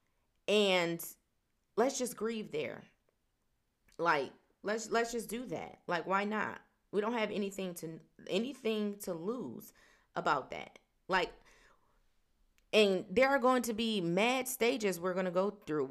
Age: 30-49